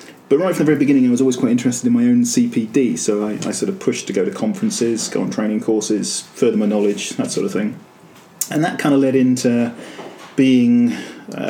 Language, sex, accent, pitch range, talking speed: English, male, British, 105-130 Hz, 225 wpm